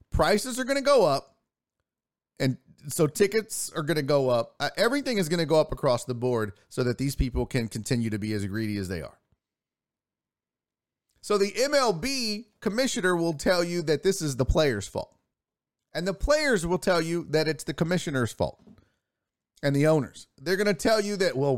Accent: American